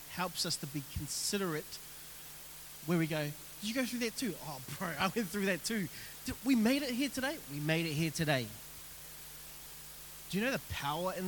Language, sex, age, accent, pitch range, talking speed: English, male, 20-39, Australian, 165-215 Hz, 195 wpm